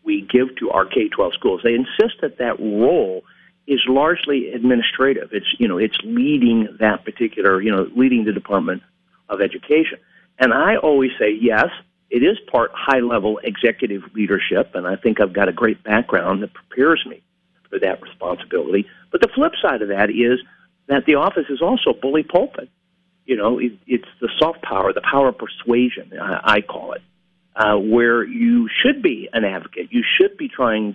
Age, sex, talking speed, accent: 50-69, male, 175 wpm, American